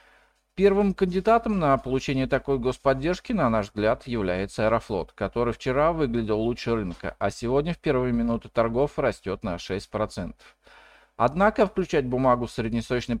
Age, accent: 40-59, native